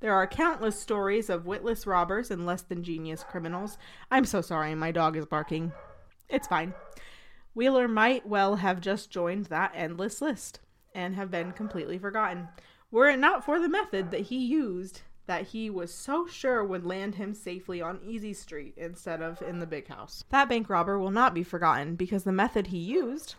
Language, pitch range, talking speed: English, 170-215 Hz, 185 wpm